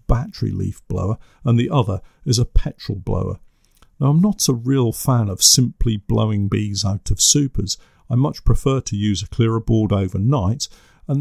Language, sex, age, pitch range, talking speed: English, male, 50-69, 100-135 Hz, 175 wpm